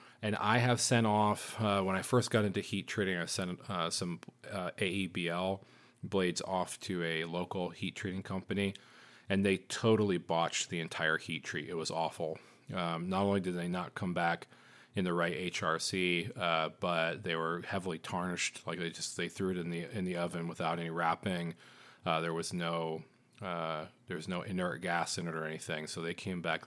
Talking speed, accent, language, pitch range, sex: 195 wpm, American, English, 85-110 Hz, male